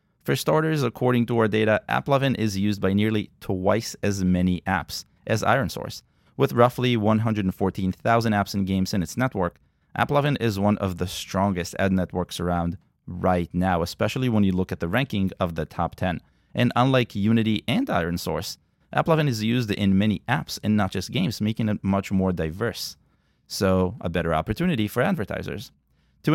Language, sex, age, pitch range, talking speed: English, male, 30-49, 90-120 Hz, 170 wpm